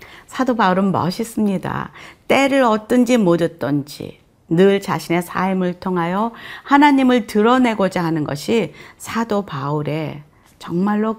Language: Korean